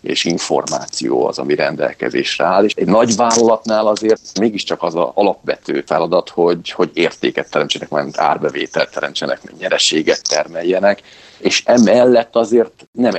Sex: male